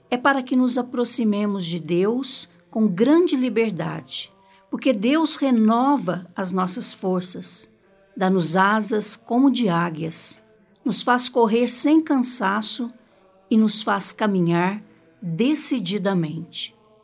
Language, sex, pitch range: Portuguese, female, 185-250 Hz